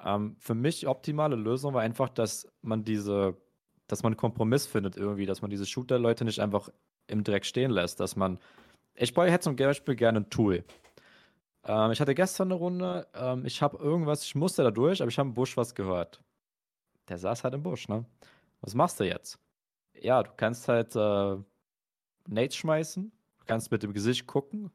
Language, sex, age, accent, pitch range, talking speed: German, male, 20-39, German, 100-140 Hz, 195 wpm